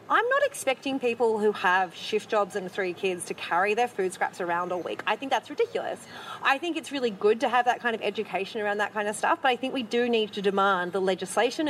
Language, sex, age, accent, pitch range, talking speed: English, female, 30-49, Australian, 190-240 Hz, 250 wpm